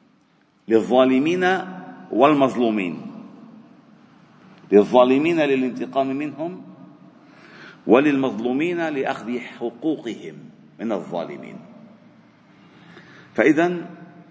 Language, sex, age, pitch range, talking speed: Arabic, male, 50-69, 115-155 Hz, 45 wpm